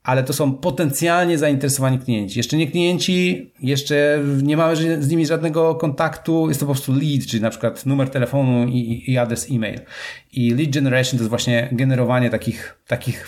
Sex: male